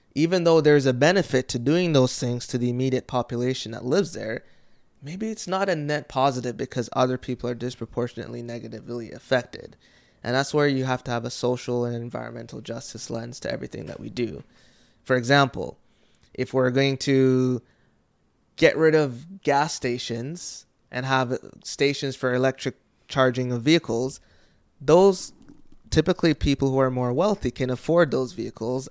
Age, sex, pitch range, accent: 20-39, male, 125-150 Hz, American